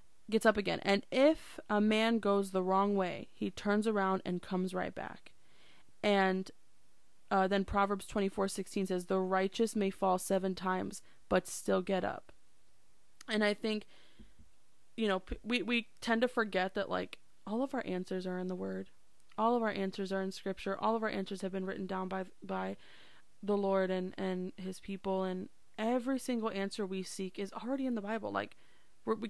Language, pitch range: English, 185-215 Hz